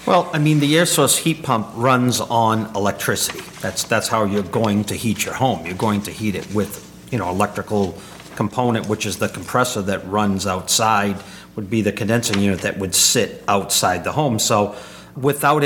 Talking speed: 190 wpm